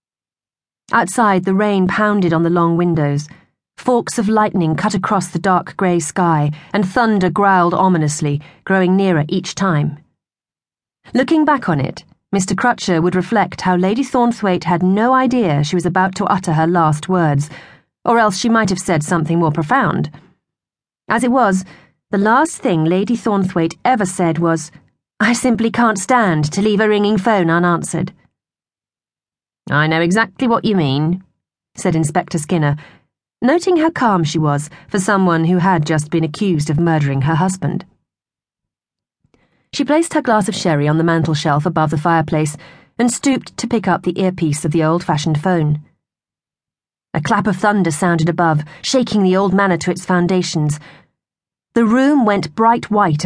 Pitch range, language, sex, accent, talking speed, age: 165-215 Hz, English, female, British, 160 wpm, 40-59